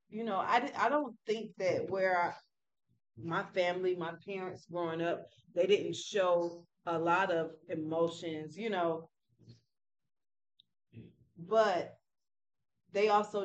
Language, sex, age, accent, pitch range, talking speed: English, female, 30-49, American, 170-215 Hz, 120 wpm